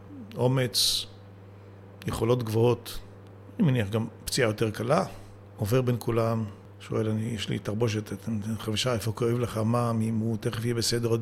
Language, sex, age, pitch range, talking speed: Hebrew, male, 50-69, 100-135 Hz, 160 wpm